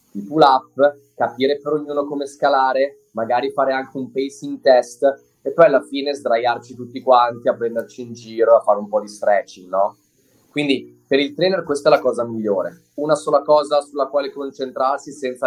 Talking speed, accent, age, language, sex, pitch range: 185 wpm, native, 20-39, Italian, male, 120-150 Hz